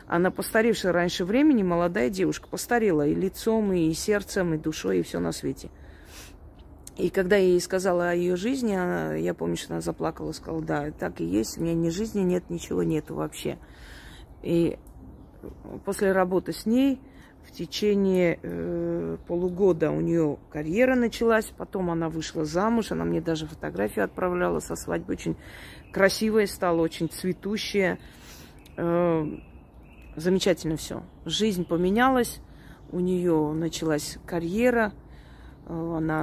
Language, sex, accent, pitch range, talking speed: Russian, female, native, 155-195 Hz, 135 wpm